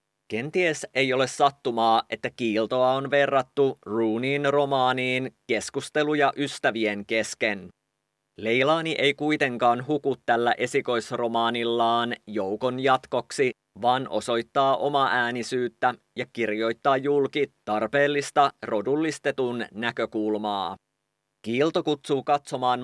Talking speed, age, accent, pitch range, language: 90 wpm, 30-49, Finnish, 115-140 Hz, English